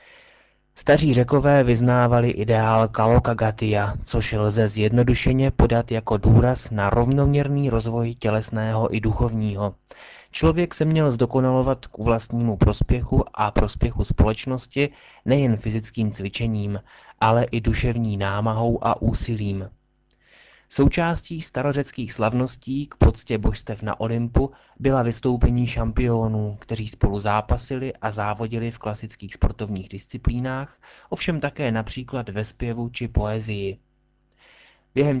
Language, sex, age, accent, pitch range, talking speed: Czech, male, 30-49, native, 105-125 Hz, 110 wpm